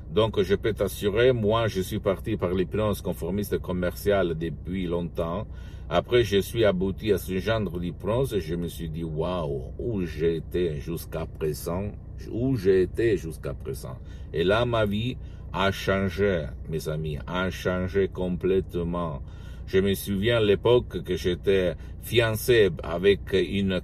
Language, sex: Italian, male